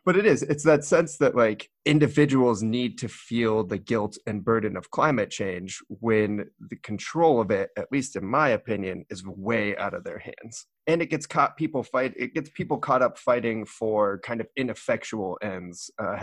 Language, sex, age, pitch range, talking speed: English, male, 30-49, 105-135 Hz, 195 wpm